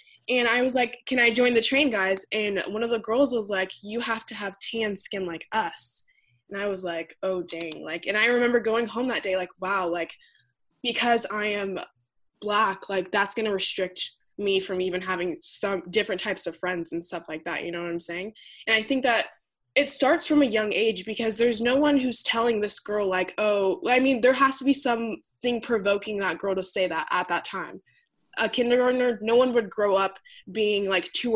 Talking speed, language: 220 wpm, English